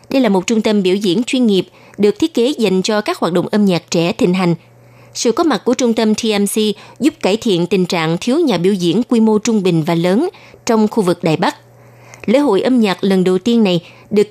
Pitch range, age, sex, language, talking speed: 180-230 Hz, 20-39, female, Vietnamese, 245 wpm